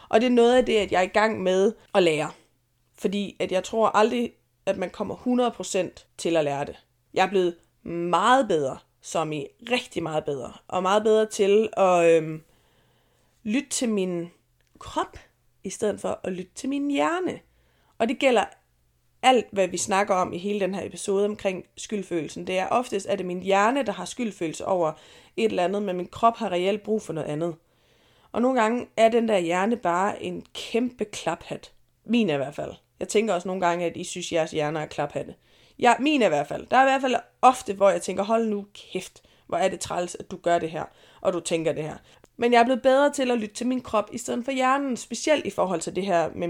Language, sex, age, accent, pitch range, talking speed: Danish, female, 30-49, native, 170-235 Hz, 225 wpm